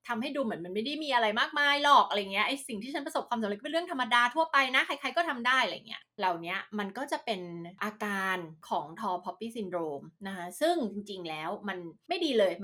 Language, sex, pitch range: Thai, female, 195-255 Hz